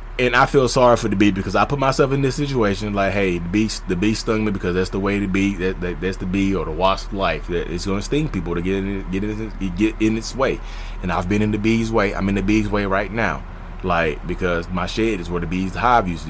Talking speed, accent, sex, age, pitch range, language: 280 wpm, American, male, 20-39, 95-125 Hz, English